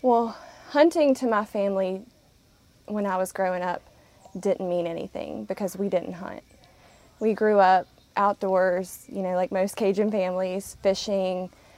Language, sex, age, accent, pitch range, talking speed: English, female, 20-39, American, 185-210 Hz, 145 wpm